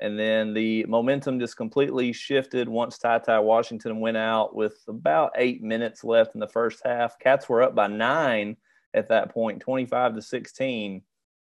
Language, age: English, 30-49